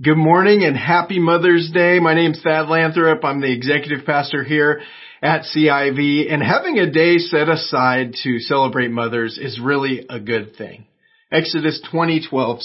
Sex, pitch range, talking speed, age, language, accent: male, 125-160 Hz, 160 wpm, 30-49, English, American